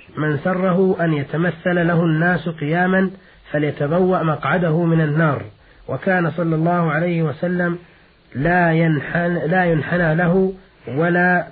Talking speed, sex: 115 wpm, male